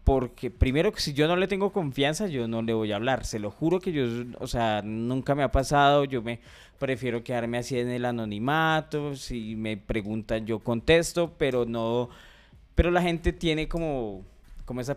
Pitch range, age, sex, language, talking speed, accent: 120-155 Hz, 20-39, male, Spanish, 190 wpm, Colombian